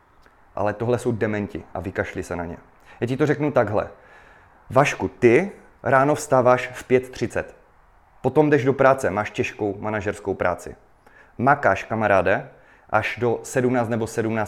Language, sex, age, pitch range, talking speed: Czech, male, 30-49, 105-125 Hz, 140 wpm